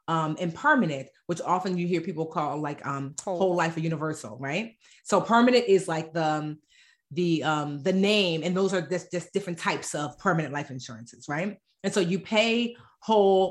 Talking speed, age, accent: 180 wpm, 30-49, American